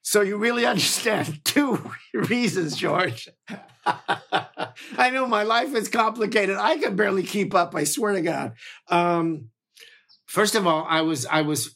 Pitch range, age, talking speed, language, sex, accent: 150-185 Hz, 50-69, 150 wpm, English, male, American